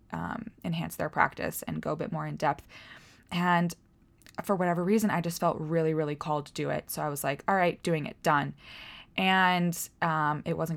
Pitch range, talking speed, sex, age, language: 155-185 Hz, 205 wpm, female, 20-39, English